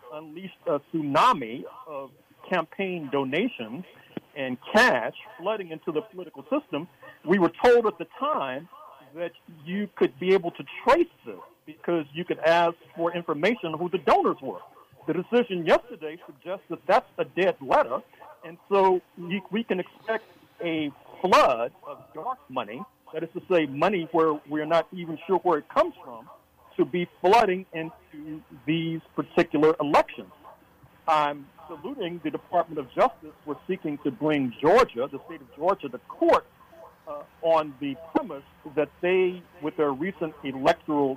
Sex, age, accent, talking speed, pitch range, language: male, 50-69, American, 155 wpm, 150-185 Hz, English